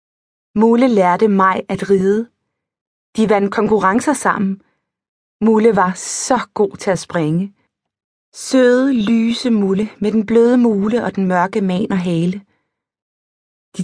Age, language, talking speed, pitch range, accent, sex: 30-49, Danish, 130 wpm, 195-230 Hz, native, female